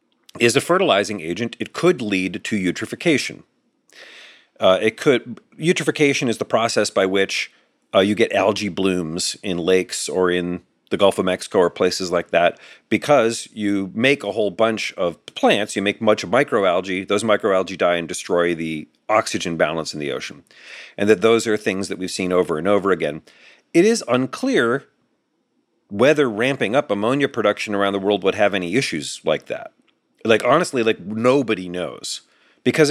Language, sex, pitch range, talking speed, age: English, male, 95-140 Hz, 170 wpm, 40-59